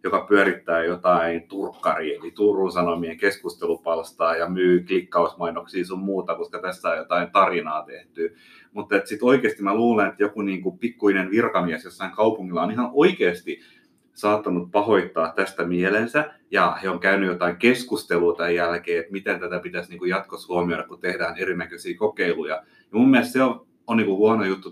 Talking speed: 165 wpm